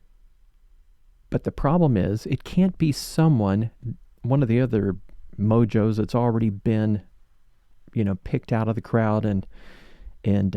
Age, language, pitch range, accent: 40-59, English, 100-125 Hz, American